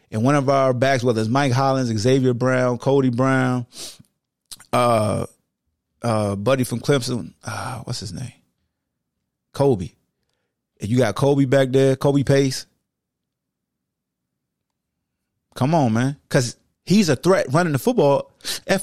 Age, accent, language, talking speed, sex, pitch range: 30-49, American, English, 135 wpm, male, 105-145 Hz